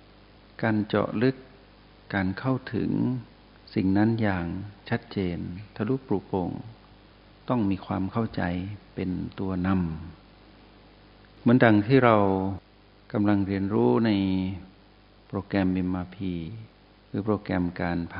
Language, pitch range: Thai, 95-105 Hz